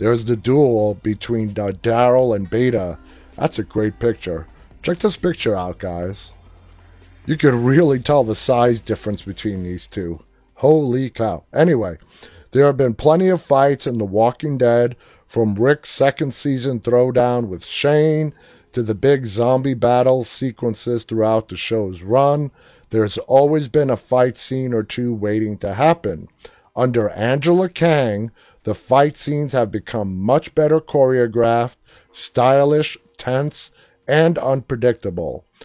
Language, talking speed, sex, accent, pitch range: English, 140 wpm, male, American, 110-140 Hz